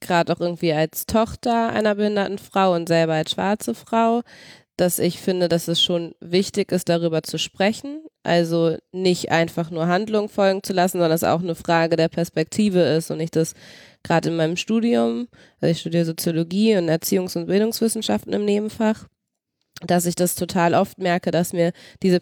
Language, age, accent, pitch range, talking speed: German, 20-39, German, 160-195 Hz, 180 wpm